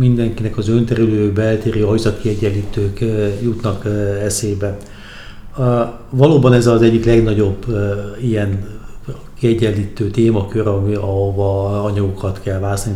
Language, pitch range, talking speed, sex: Hungarian, 100-120 Hz, 90 wpm, male